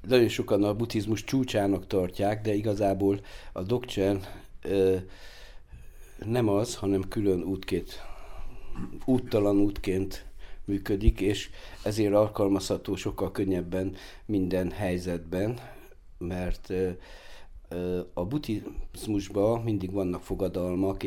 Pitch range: 90-100 Hz